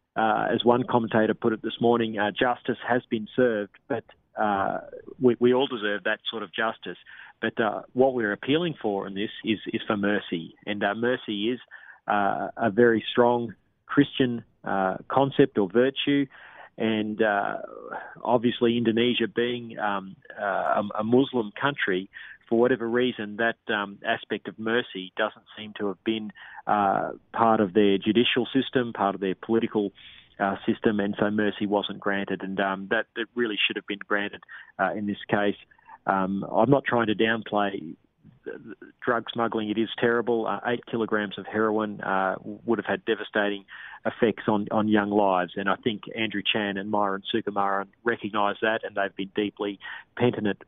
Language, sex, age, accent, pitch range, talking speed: English, male, 40-59, Australian, 100-120 Hz, 170 wpm